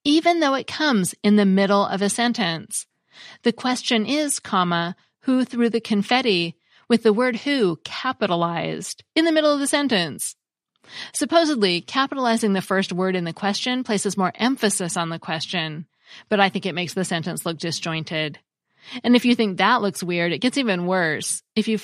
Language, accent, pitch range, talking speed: English, American, 175-230 Hz, 175 wpm